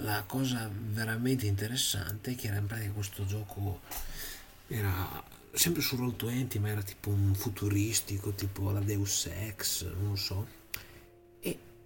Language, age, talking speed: Italian, 30-49, 145 wpm